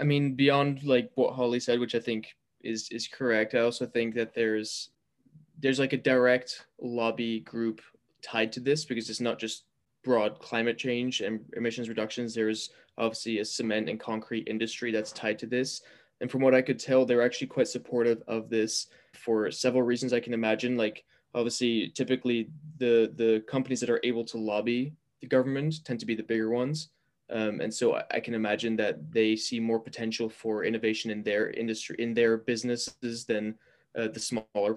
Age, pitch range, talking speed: 20-39, 110-125 Hz, 190 wpm